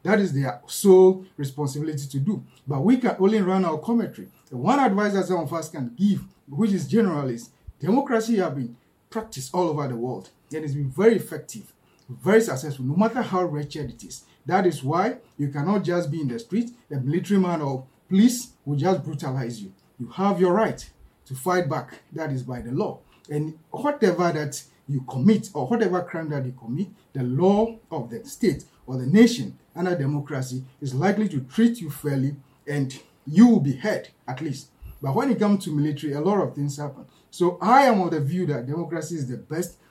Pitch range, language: 140-195 Hz, English